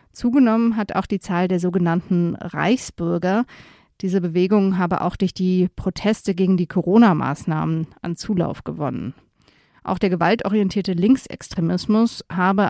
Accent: German